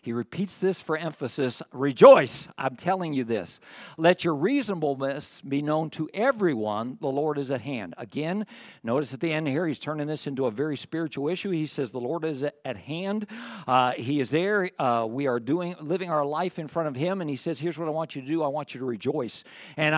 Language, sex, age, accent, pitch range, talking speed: English, male, 50-69, American, 135-175 Hz, 220 wpm